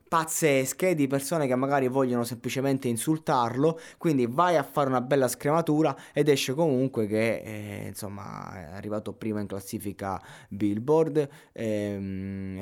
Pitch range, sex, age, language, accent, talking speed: 105-125 Hz, male, 20-39, Italian, native, 135 wpm